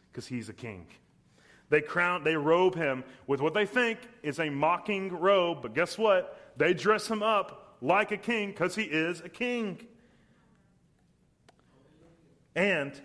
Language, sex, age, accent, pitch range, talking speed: English, male, 30-49, American, 135-195 Hz, 150 wpm